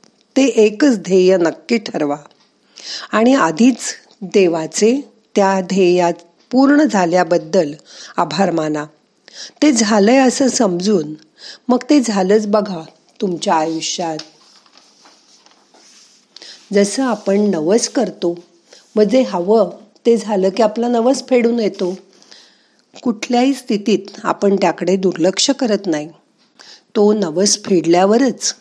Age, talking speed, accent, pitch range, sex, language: 40-59, 100 wpm, native, 175-235 Hz, female, Marathi